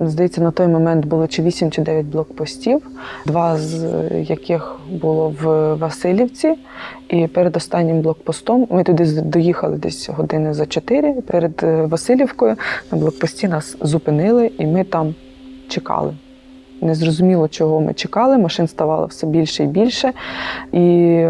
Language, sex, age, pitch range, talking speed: Ukrainian, female, 20-39, 160-205 Hz, 135 wpm